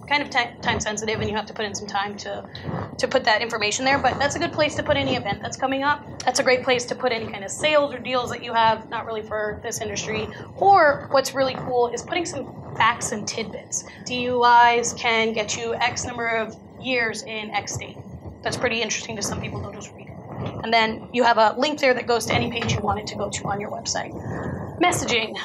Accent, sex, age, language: American, female, 20-39, English